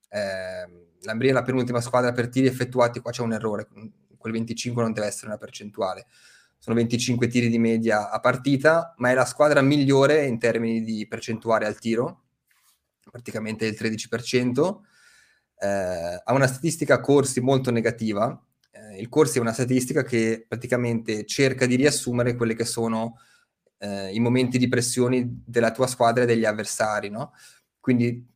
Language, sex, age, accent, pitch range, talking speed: Italian, male, 20-39, native, 110-125 Hz, 155 wpm